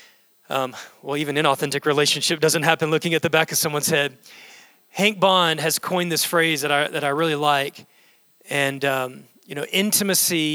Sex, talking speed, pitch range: male, 175 wpm, 150-185 Hz